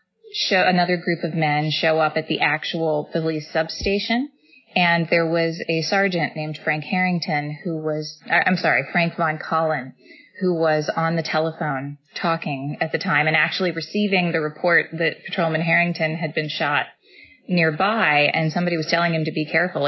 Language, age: English, 30-49